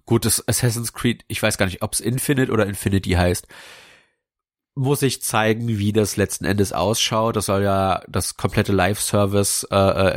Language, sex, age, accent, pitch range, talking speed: German, male, 30-49, German, 95-115 Hz, 170 wpm